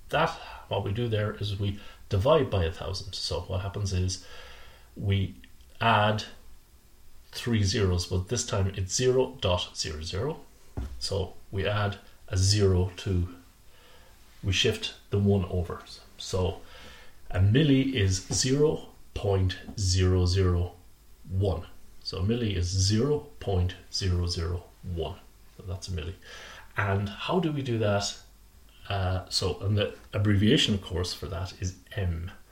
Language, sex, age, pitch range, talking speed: English, male, 30-49, 90-105 Hz, 140 wpm